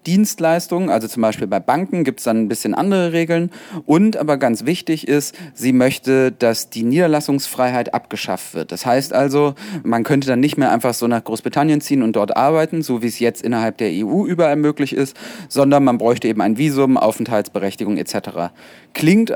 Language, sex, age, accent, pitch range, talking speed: German, male, 30-49, German, 115-145 Hz, 185 wpm